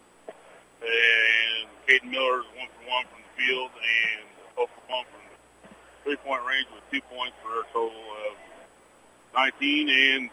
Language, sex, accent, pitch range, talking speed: English, male, American, 115-140 Hz, 150 wpm